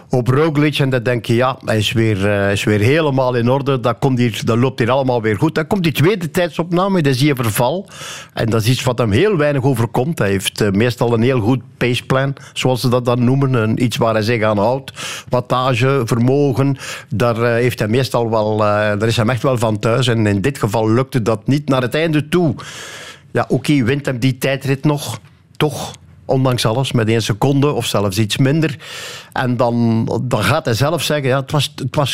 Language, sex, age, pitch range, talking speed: Dutch, male, 60-79, 120-155 Hz, 205 wpm